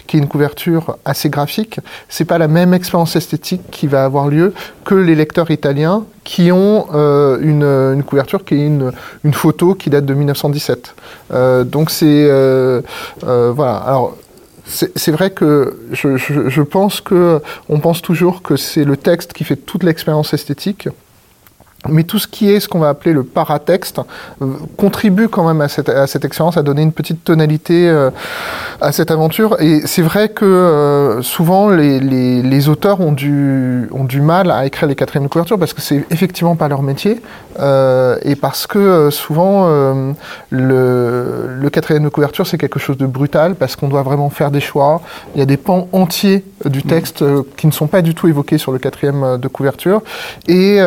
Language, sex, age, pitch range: French, male, 30-49, 140-180 Hz